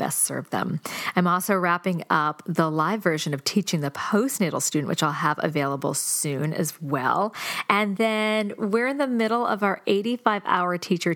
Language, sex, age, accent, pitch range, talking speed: English, female, 40-59, American, 165-220 Hz, 170 wpm